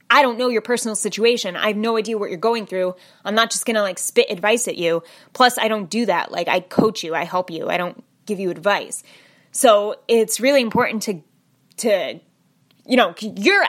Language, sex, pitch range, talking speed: English, female, 200-250 Hz, 220 wpm